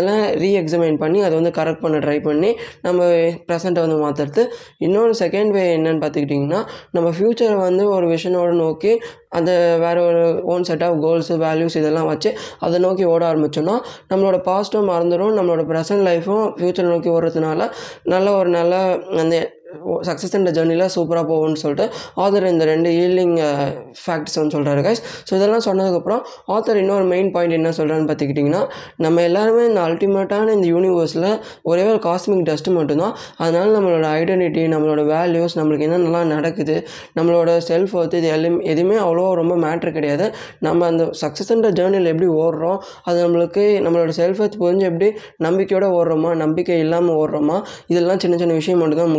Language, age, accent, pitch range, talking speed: Tamil, 20-39, native, 160-190 Hz, 155 wpm